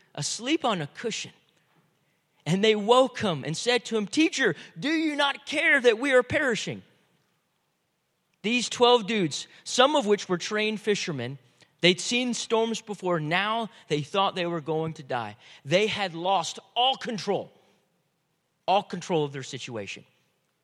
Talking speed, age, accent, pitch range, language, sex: 150 wpm, 40-59, American, 155-205 Hz, English, male